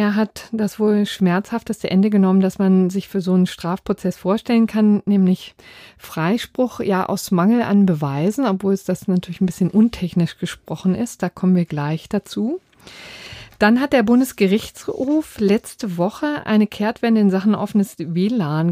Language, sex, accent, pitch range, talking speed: German, female, German, 180-210 Hz, 155 wpm